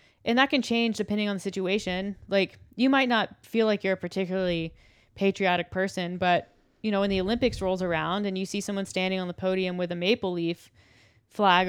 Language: English